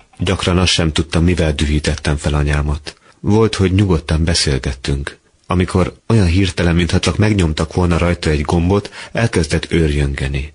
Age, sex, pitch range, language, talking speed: 30-49, male, 75-90 Hz, Hungarian, 135 wpm